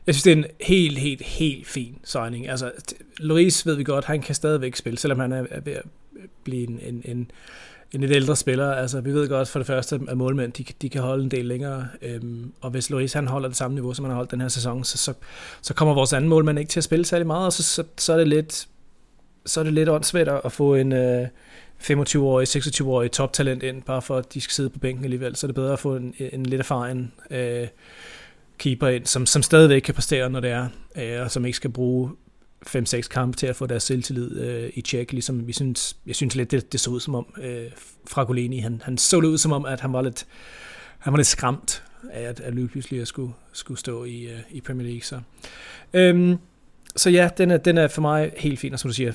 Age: 30-49